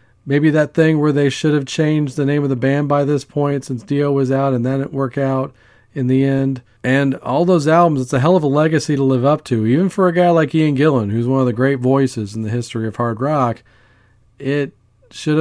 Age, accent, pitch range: 40-59, American, 115-150 Hz